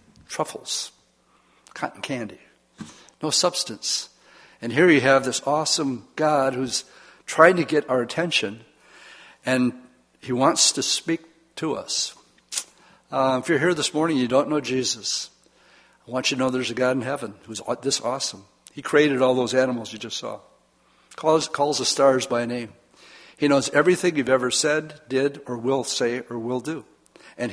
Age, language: 60-79, English